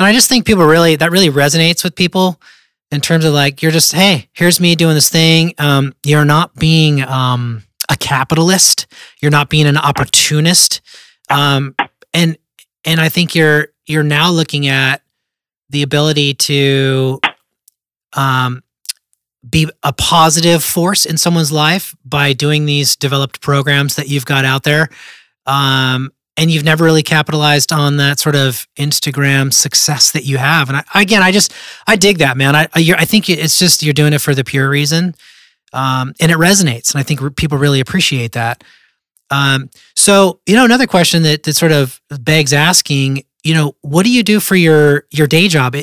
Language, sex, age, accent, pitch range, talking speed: English, male, 30-49, American, 140-165 Hz, 180 wpm